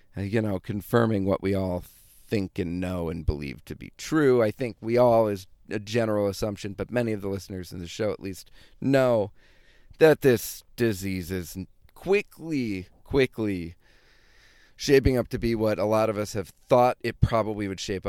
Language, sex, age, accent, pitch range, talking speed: English, male, 40-59, American, 95-120 Hz, 180 wpm